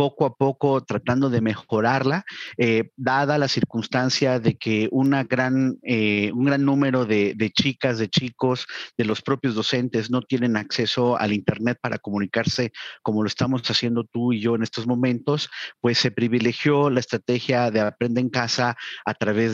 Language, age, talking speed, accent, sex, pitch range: Spanish, 40-59, 170 wpm, Mexican, male, 115-135 Hz